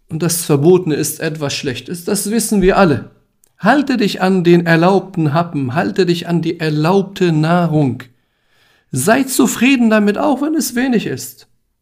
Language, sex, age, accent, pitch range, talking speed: German, male, 50-69, German, 150-205 Hz, 150 wpm